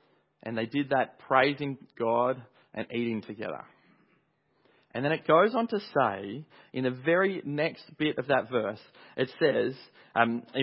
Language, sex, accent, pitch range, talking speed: English, male, Australian, 120-160 Hz, 150 wpm